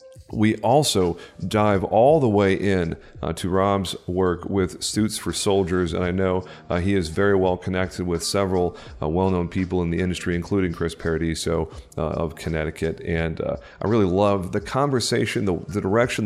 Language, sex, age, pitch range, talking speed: English, male, 40-59, 85-100 Hz, 175 wpm